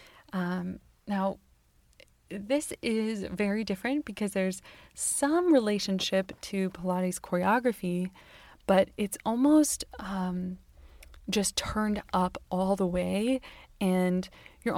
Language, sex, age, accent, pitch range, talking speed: English, female, 20-39, American, 180-210 Hz, 100 wpm